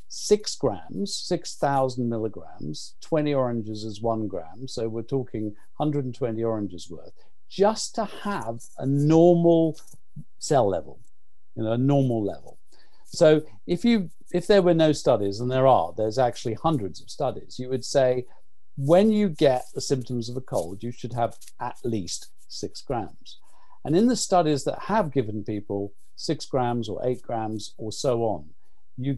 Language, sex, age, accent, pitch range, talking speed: English, male, 50-69, British, 115-155 Hz, 160 wpm